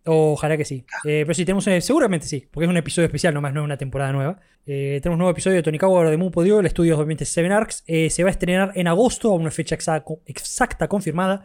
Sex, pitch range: male, 160-220 Hz